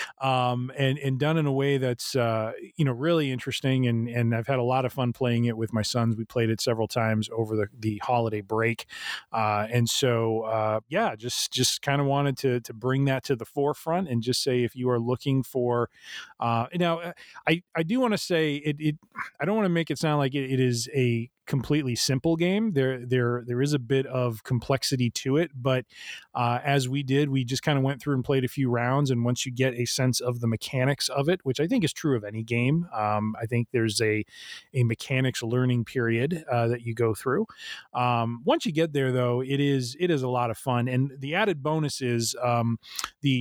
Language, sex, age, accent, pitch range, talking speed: English, male, 30-49, American, 120-145 Hz, 230 wpm